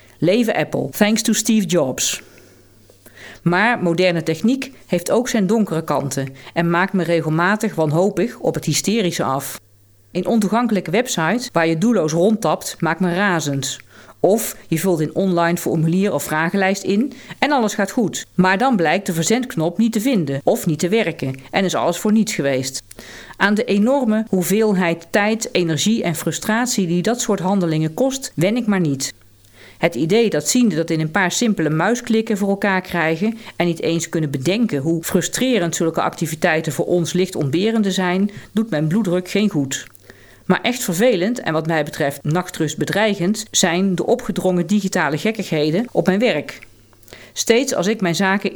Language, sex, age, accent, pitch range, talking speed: Dutch, female, 40-59, Dutch, 160-215 Hz, 165 wpm